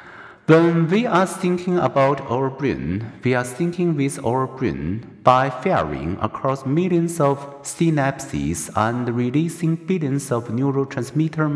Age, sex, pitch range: 60-79, male, 120-160 Hz